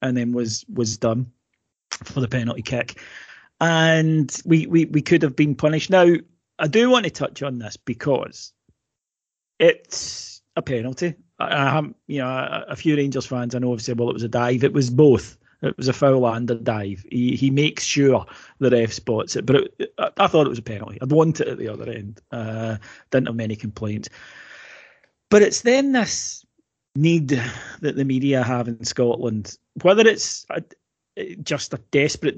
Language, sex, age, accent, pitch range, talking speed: English, male, 30-49, British, 120-145 Hz, 190 wpm